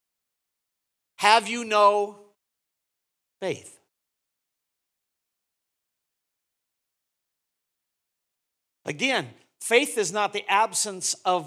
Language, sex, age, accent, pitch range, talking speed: English, male, 50-69, American, 200-260 Hz, 60 wpm